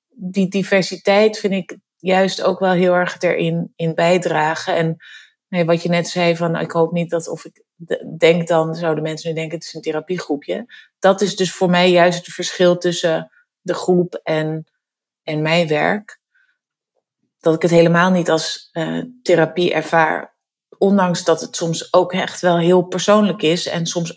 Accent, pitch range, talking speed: Dutch, 160-185 Hz, 175 wpm